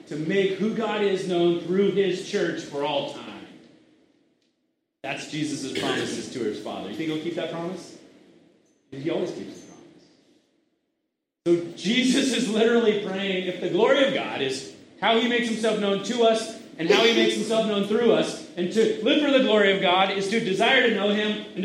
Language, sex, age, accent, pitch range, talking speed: English, male, 30-49, American, 170-255 Hz, 195 wpm